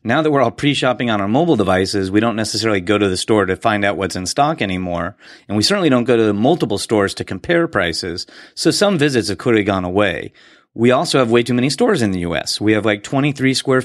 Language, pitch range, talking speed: English, 105-120 Hz, 245 wpm